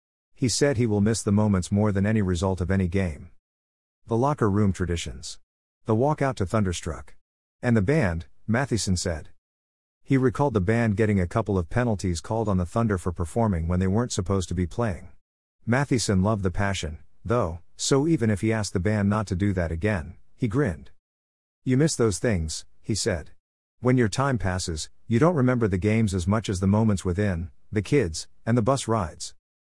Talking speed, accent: 195 wpm, American